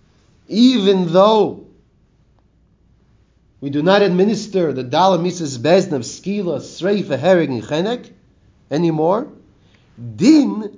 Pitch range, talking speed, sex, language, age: 130-185 Hz, 80 wpm, male, English, 40-59